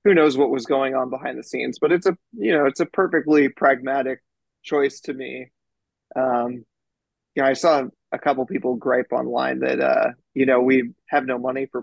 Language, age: English, 20-39